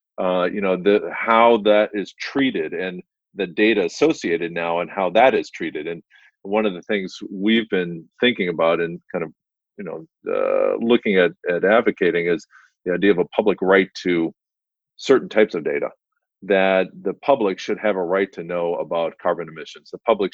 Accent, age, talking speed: American, 40-59, 185 wpm